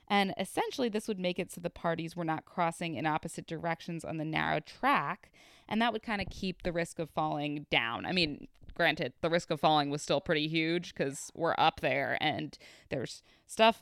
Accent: American